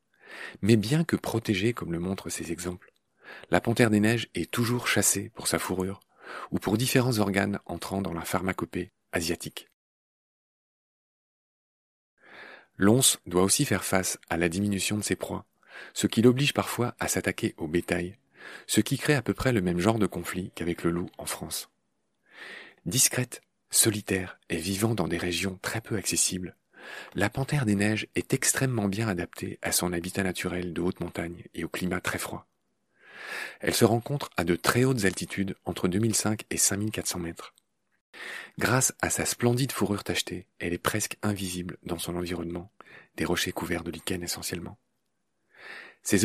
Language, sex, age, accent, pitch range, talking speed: French, male, 40-59, French, 90-115 Hz, 165 wpm